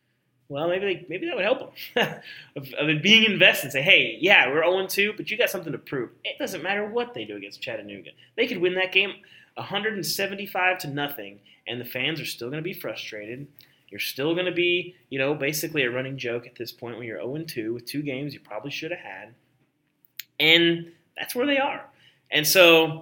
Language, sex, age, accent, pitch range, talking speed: English, male, 20-39, American, 125-170 Hz, 220 wpm